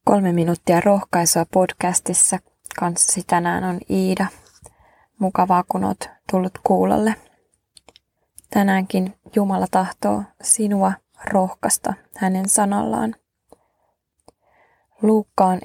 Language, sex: Finnish, female